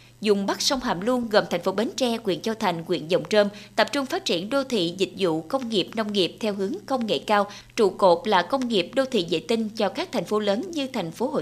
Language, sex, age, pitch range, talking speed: Vietnamese, female, 20-39, 200-255 Hz, 270 wpm